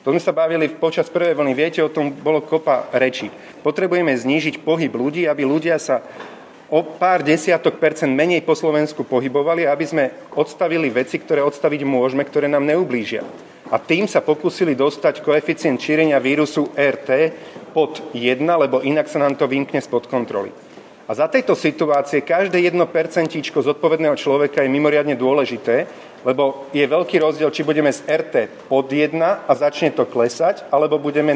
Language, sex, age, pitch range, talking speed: Slovak, male, 30-49, 140-160 Hz, 165 wpm